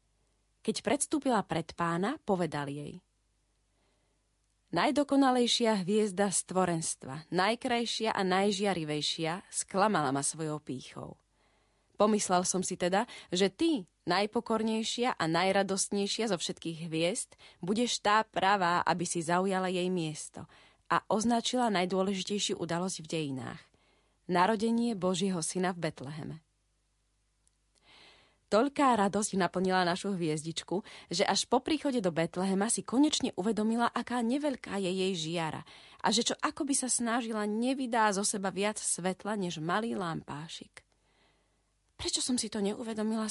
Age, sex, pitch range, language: 30-49, female, 180-235 Hz, Slovak